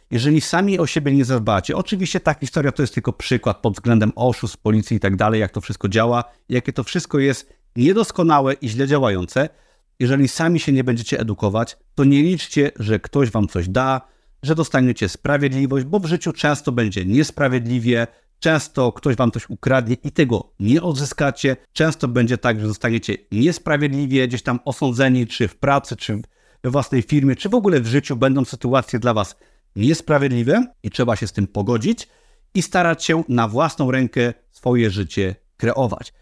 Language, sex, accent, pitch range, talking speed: Polish, male, native, 115-145 Hz, 175 wpm